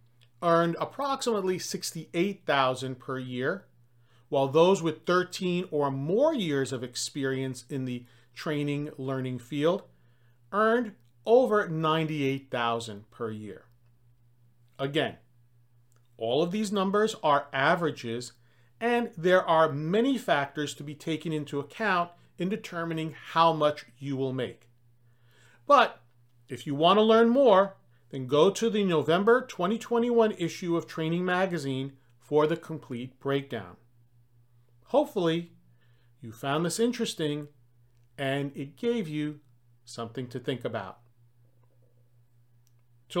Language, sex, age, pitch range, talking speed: English, male, 40-59, 120-175 Hz, 115 wpm